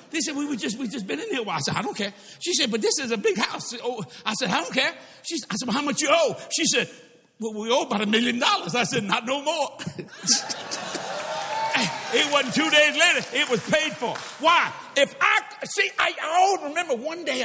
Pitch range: 190-290 Hz